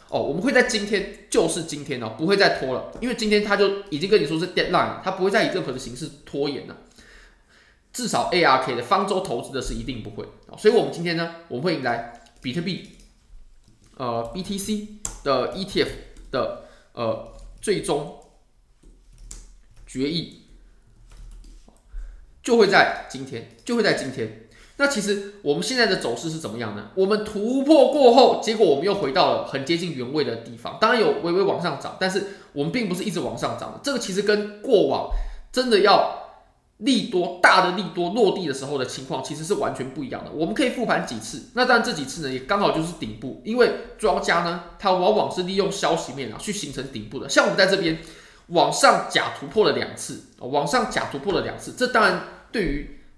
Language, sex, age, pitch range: Chinese, male, 20-39, 135-210 Hz